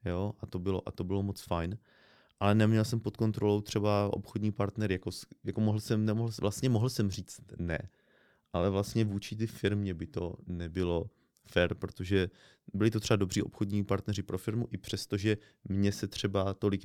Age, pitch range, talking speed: 30-49, 95-105 Hz, 180 wpm